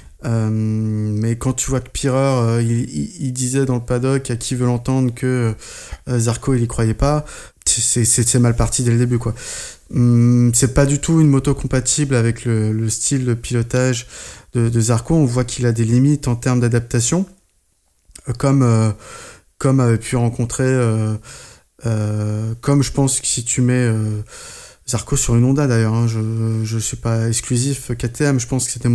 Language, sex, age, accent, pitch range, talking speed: French, male, 20-39, French, 115-135 Hz, 195 wpm